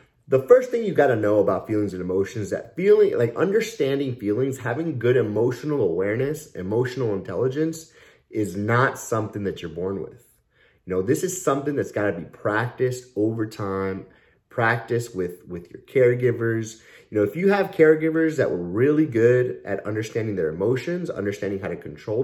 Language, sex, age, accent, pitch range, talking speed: English, male, 30-49, American, 105-155 Hz, 170 wpm